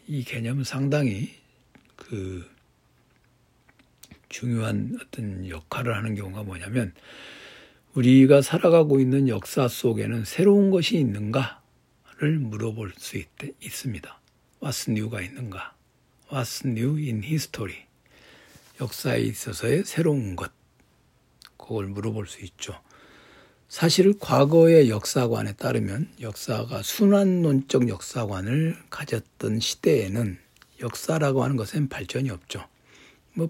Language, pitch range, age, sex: Korean, 110-140 Hz, 60-79, male